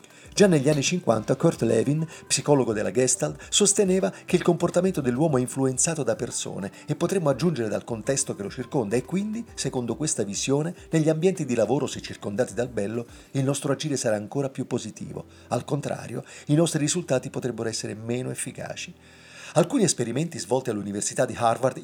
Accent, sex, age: native, male, 40-59